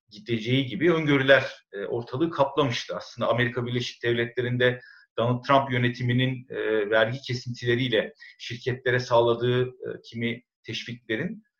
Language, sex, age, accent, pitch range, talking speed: Turkish, male, 50-69, native, 115-150 Hz, 95 wpm